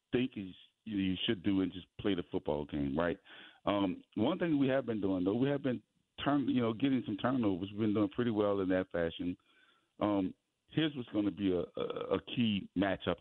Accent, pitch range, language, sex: American, 90-110 Hz, English, male